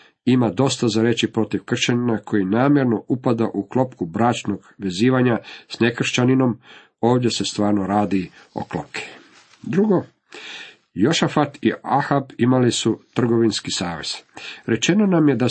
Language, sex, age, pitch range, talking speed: Croatian, male, 50-69, 105-130 Hz, 130 wpm